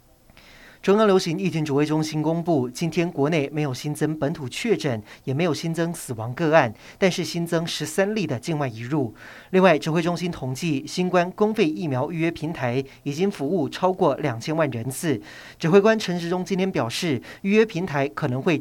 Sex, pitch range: male, 135-185 Hz